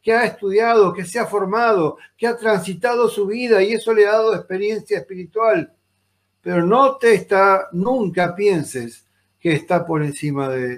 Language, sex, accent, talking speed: Spanish, male, Argentinian, 165 wpm